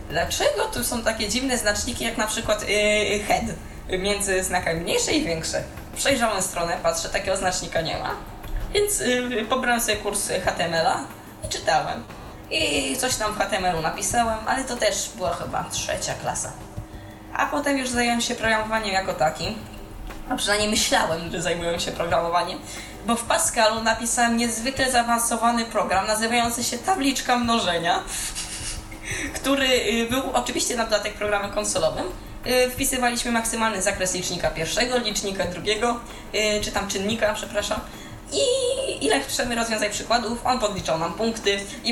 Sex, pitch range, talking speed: female, 195-235 Hz, 135 wpm